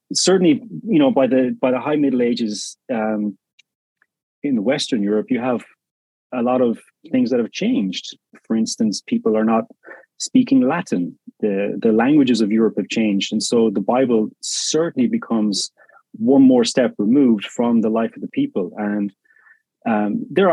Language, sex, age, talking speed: English, male, 30-49, 165 wpm